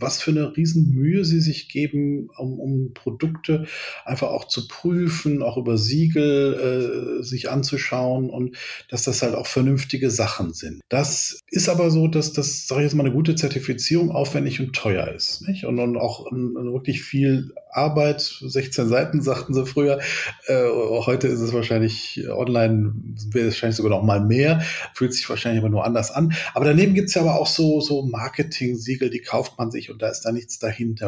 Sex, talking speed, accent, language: male, 185 wpm, German, German